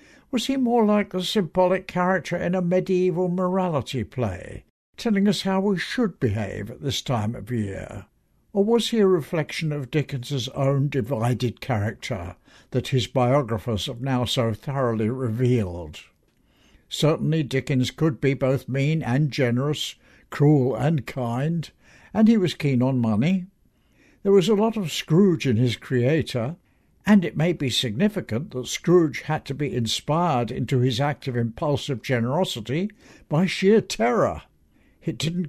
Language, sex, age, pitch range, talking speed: English, male, 60-79, 125-175 Hz, 150 wpm